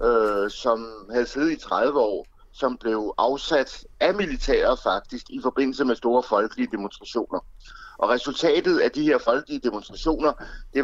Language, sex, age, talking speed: Danish, male, 60-79, 145 wpm